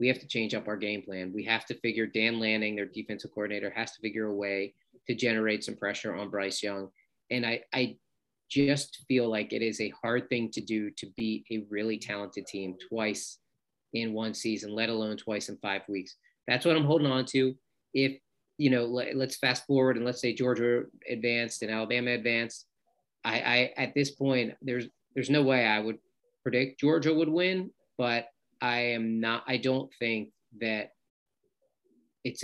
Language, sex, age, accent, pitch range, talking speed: English, male, 30-49, American, 110-135 Hz, 190 wpm